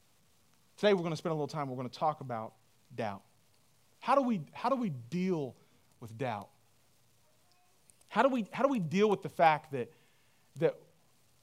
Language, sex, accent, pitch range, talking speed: English, male, American, 135-215 Hz, 185 wpm